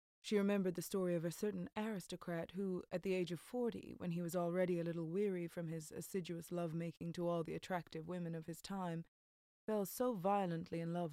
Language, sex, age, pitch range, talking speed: English, female, 20-39, 165-190 Hz, 205 wpm